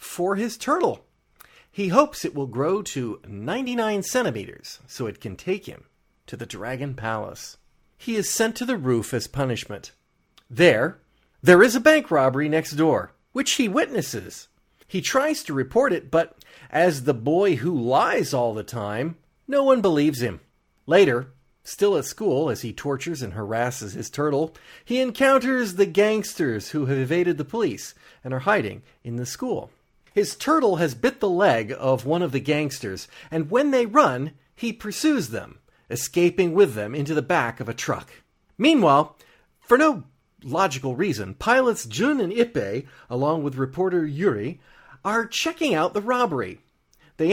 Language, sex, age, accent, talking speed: English, male, 40-59, American, 165 wpm